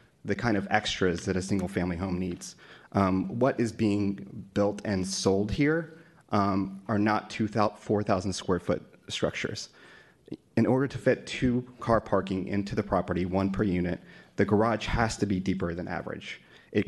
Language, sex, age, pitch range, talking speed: English, male, 30-49, 95-110 Hz, 165 wpm